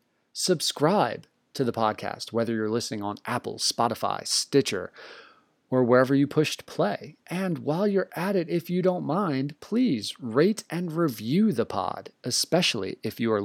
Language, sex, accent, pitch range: English, male, American, 125-185 Hz